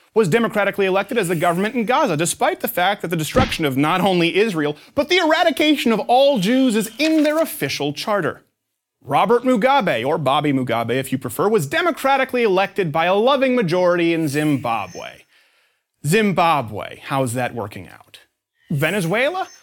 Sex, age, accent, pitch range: male, 30-49, American, 145-240 Hz